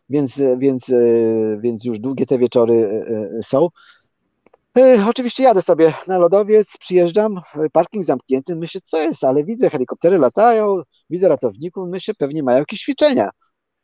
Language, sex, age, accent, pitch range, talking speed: Polish, male, 40-59, native, 130-180 Hz, 125 wpm